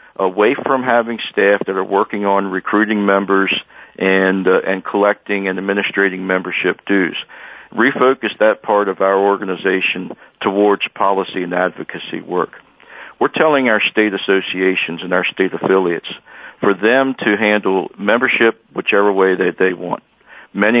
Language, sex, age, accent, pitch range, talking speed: English, male, 50-69, American, 95-105 Hz, 140 wpm